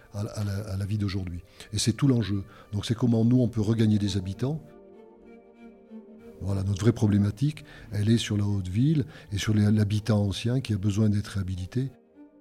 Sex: male